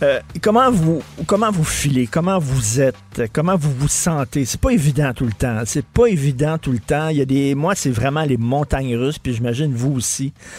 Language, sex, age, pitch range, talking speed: French, male, 50-69, 125-160 Hz, 220 wpm